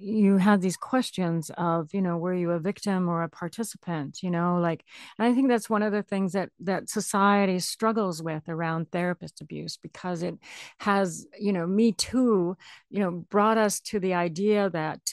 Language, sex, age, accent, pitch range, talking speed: English, female, 50-69, American, 165-205 Hz, 190 wpm